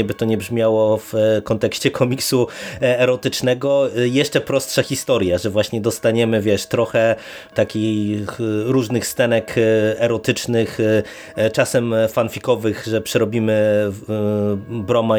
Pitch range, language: 110-130 Hz, Polish